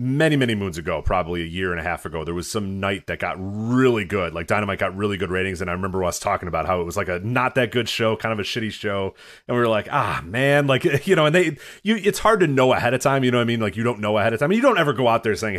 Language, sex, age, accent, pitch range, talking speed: English, male, 30-49, American, 90-120 Hz, 325 wpm